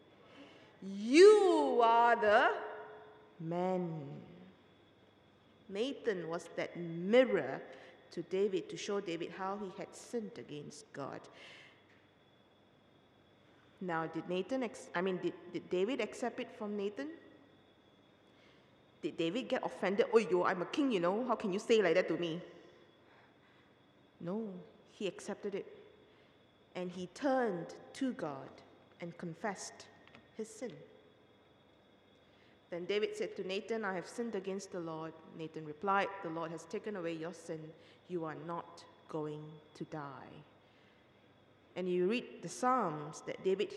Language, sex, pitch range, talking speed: English, female, 165-220 Hz, 135 wpm